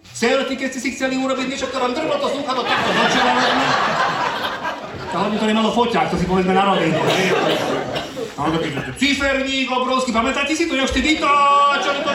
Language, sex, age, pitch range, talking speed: Slovak, male, 40-59, 195-270 Hz, 210 wpm